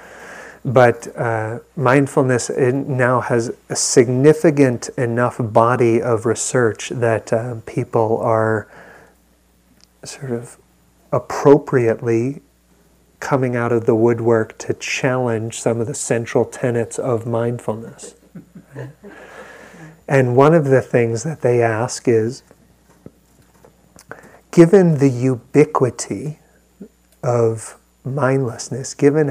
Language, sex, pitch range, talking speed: English, male, 115-135 Hz, 100 wpm